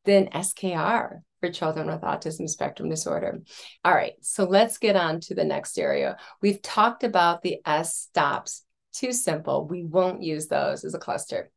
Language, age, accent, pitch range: English, 30-49, American, 175-215 Hz